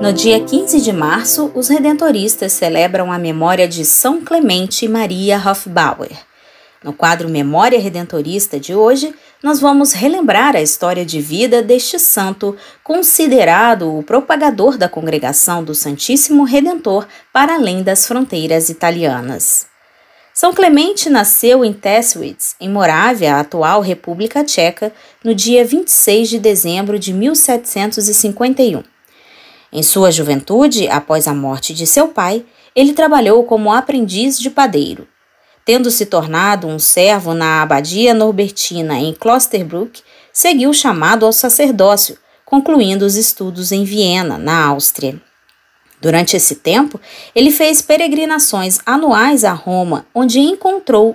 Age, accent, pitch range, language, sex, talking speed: 20-39, Brazilian, 170-265 Hz, Portuguese, female, 125 wpm